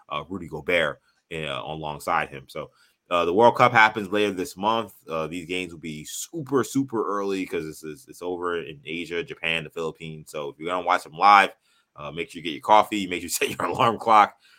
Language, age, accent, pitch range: English, 20-39, American, 85-105 Hz